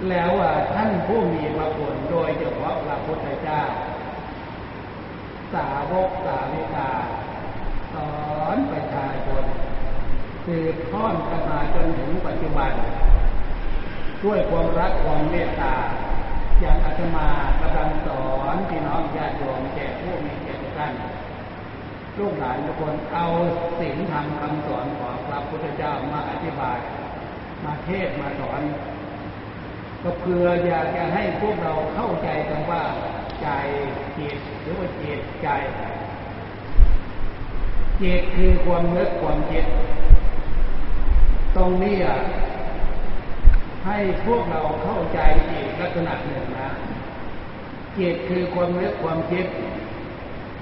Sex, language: male, Thai